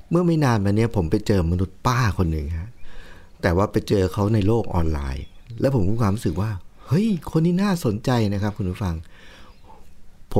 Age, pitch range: 60-79, 90-110 Hz